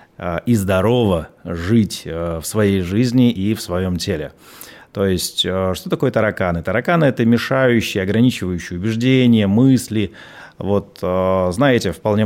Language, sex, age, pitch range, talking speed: Russian, male, 30-49, 95-125 Hz, 120 wpm